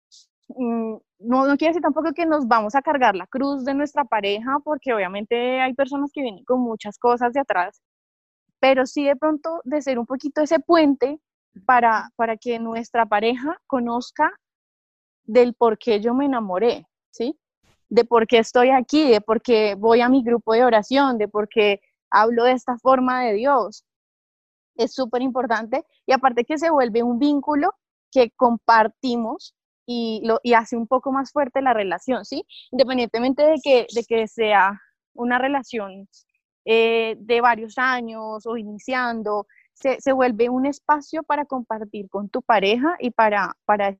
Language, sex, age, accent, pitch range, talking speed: Spanish, female, 20-39, Colombian, 225-270 Hz, 165 wpm